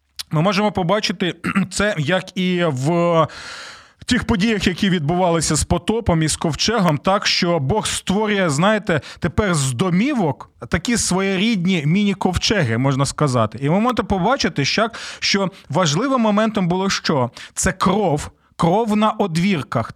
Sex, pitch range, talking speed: male, 155-205 Hz, 130 wpm